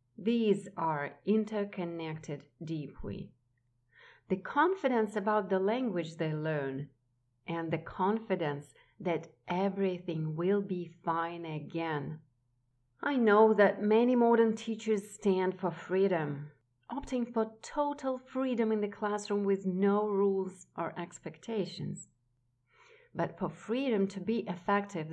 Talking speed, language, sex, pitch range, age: 110 wpm, English, female, 160-210 Hz, 40-59